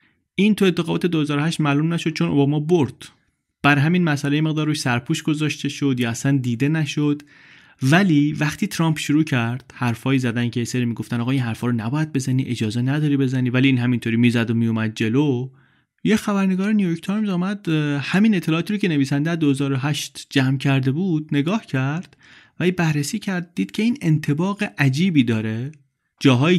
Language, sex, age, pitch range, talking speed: Persian, male, 30-49, 125-155 Hz, 165 wpm